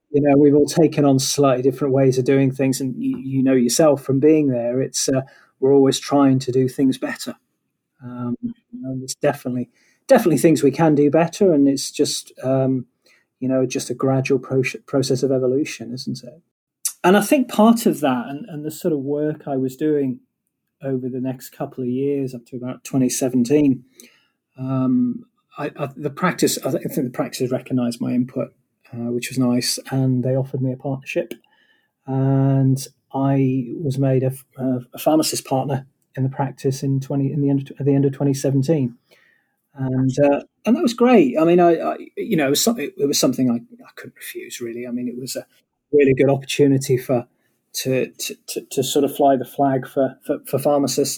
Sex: male